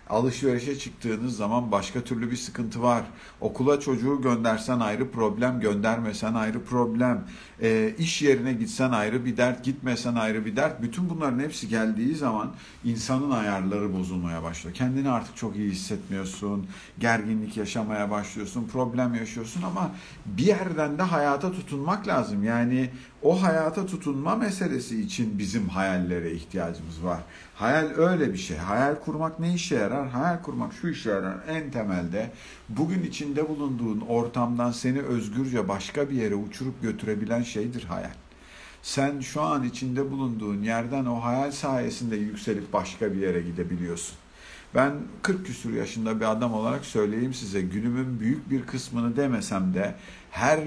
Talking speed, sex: 145 wpm, male